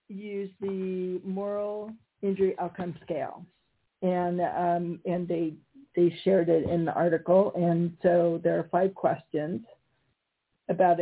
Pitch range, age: 170-195 Hz, 50-69